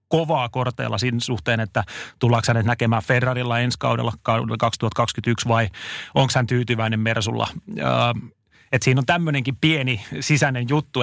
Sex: male